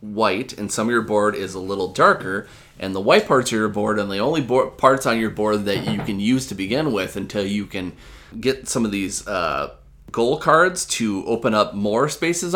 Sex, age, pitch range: male, 20-39, 100-130 Hz